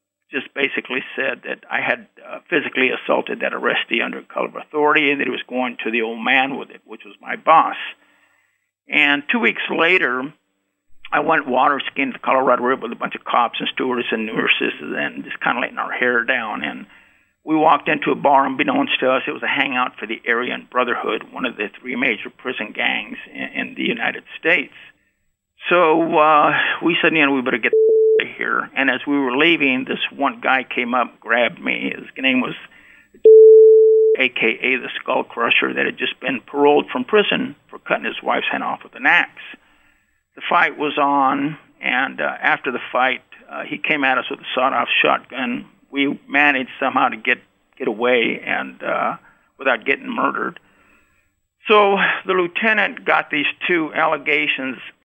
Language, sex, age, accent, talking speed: English, male, 50-69, American, 185 wpm